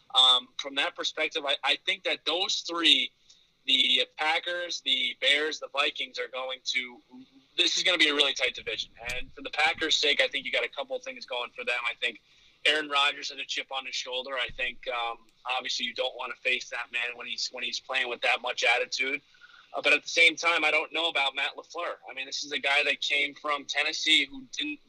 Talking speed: 235 wpm